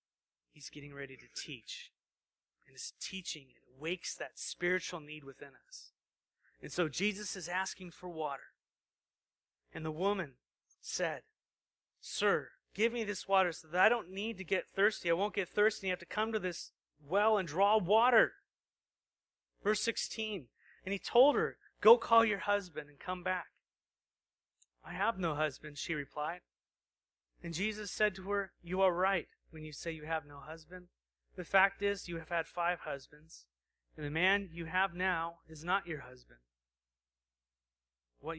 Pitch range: 145-195 Hz